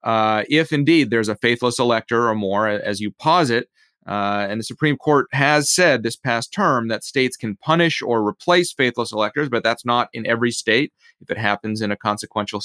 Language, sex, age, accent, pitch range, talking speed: English, male, 30-49, American, 105-125 Hz, 200 wpm